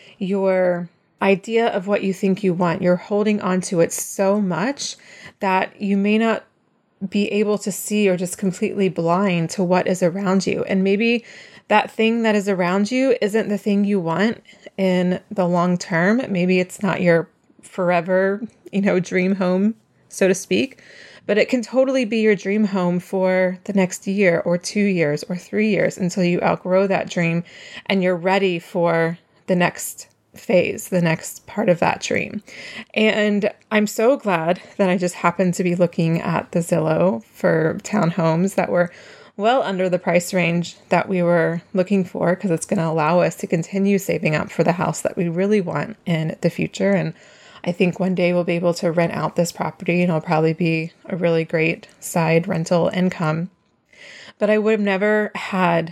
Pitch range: 175-205 Hz